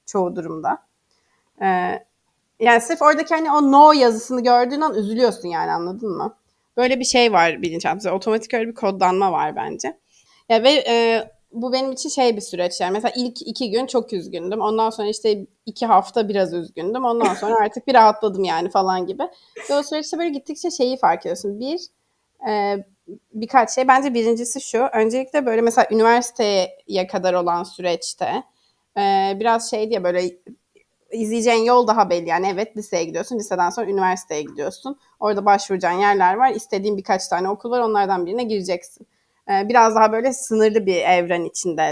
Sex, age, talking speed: female, 30-49, 160 wpm